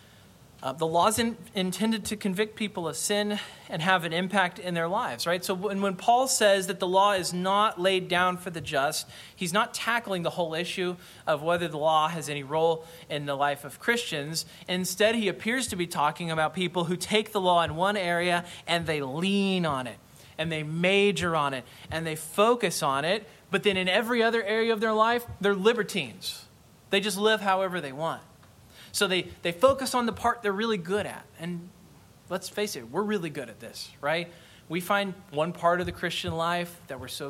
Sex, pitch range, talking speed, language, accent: male, 165-205 Hz, 210 wpm, English, American